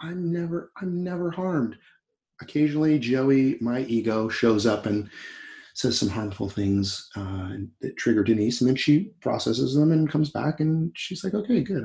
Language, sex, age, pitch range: English, male, 30-49, 110-155 Hz